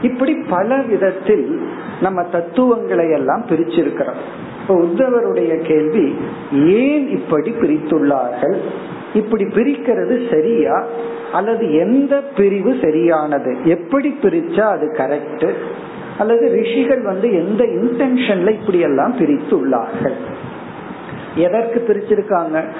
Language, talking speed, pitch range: Tamil, 60 wpm, 170-245 Hz